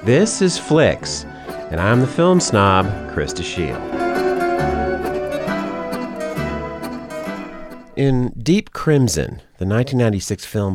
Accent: American